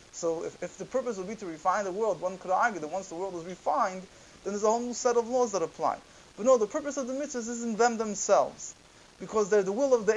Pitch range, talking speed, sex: 180-220 Hz, 275 wpm, male